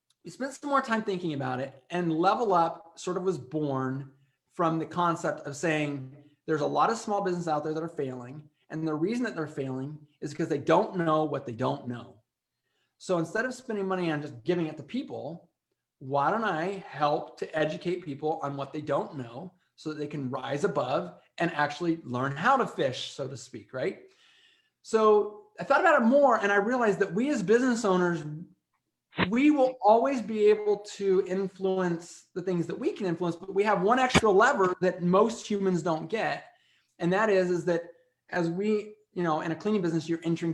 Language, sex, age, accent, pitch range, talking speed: English, male, 30-49, American, 155-205 Hz, 205 wpm